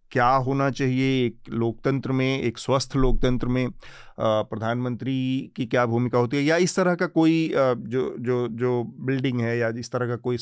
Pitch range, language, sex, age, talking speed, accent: 115-135 Hz, Hindi, male, 40-59, 180 wpm, native